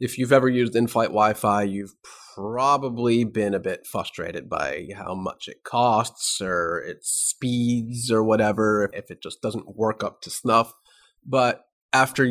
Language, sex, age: English, male, 30-49